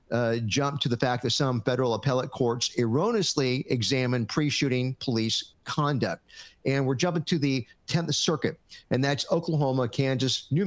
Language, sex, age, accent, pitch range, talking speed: English, male, 50-69, American, 120-145 Hz, 150 wpm